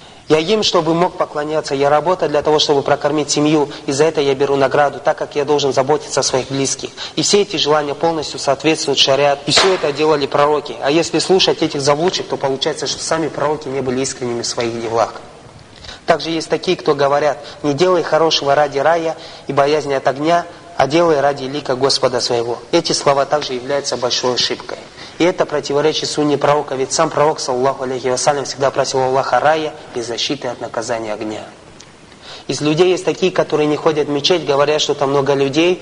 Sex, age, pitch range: male, 30-49, 135-155 Hz